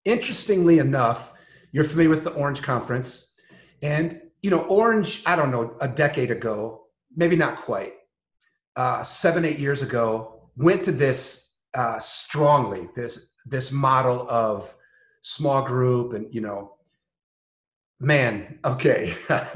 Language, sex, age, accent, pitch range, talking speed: English, male, 40-59, American, 125-160 Hz, 130 wpm